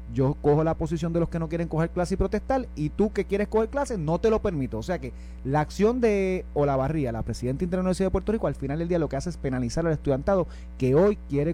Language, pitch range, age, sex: Spanish, 130-195 Hz, 30-49, male